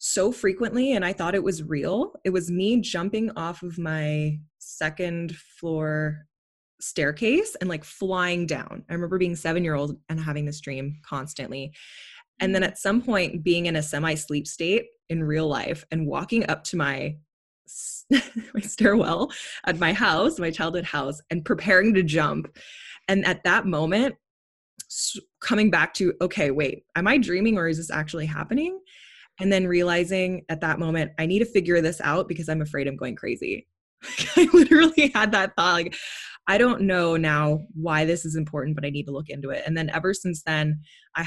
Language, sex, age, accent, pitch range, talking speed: English, female, 20-39, American, 155-195 Hz, 185 wpm